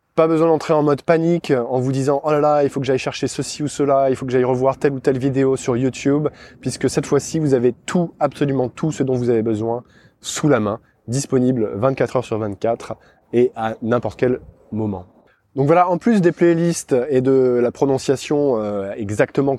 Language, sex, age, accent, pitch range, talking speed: French, male, 20-39, French, 120-145 Hz, 220 wpm